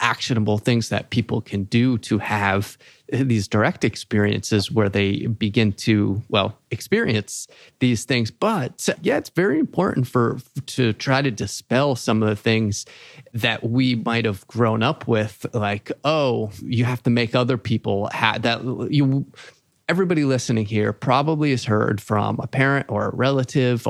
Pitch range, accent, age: 110-135 Hz, American, 30-49